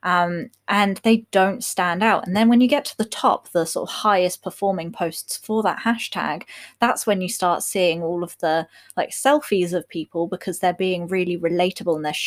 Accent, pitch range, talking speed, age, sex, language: British, 180-230 Hz, 205 wpm, 20-39, female, English